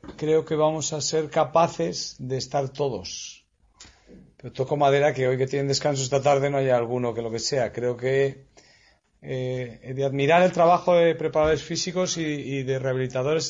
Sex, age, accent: male, 40-59, Spanish